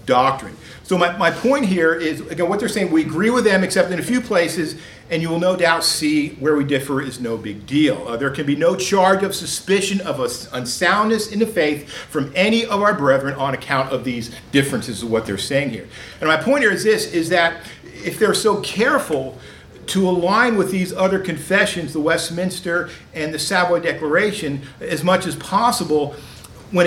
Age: 50-69